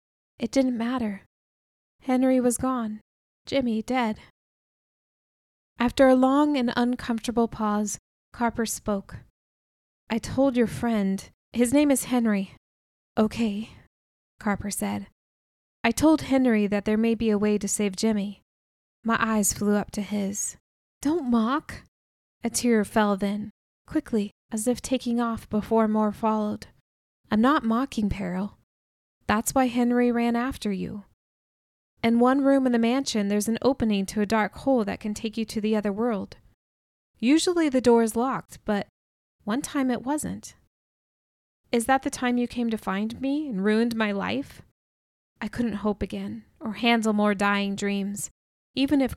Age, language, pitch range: 20-39, English, 205-245 Hz